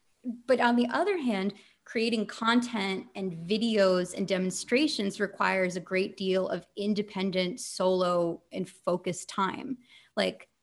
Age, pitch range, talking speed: 30-49, 175-210 Hz, 125 wpm